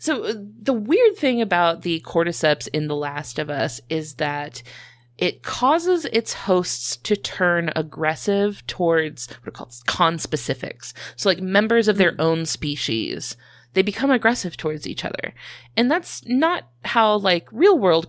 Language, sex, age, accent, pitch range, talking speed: English, female, 30-49, American, 150-205 Hz, 155 wpm